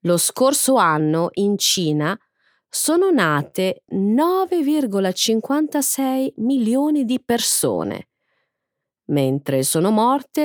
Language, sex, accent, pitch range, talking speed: Italian, female, native, 160-260 Hz, 80 wpm